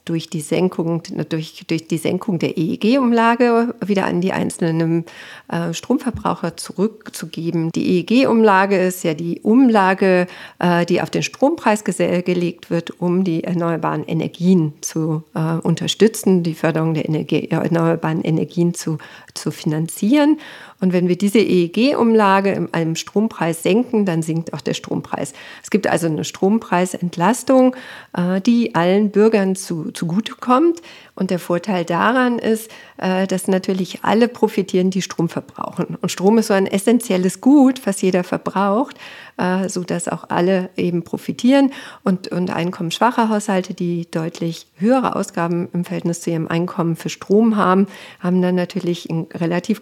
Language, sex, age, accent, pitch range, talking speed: German, female, 40-59, German, 170-210 Hz, 140 wpm